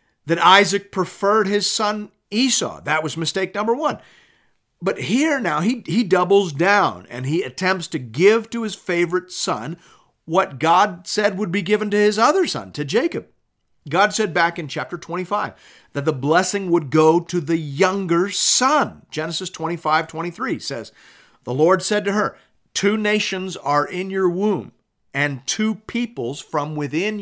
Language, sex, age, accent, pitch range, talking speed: English, male, 50-69, American, 145-205 Hz, 165 wpm